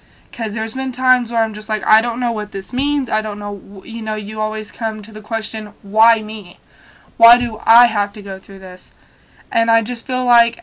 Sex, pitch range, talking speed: female, 215-250 Hz, 225 wpm